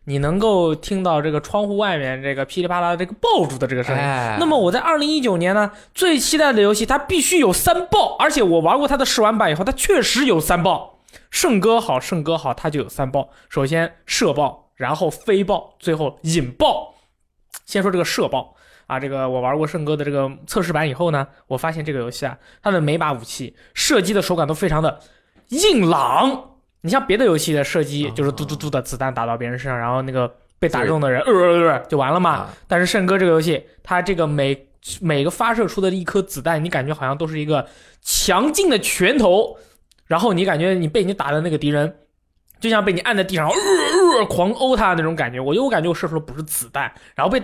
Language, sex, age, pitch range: Chinese, male, 20-39, 145-205 Hz